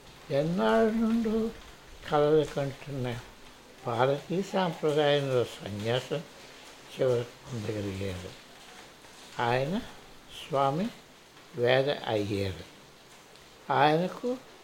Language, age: Telugu, 60-79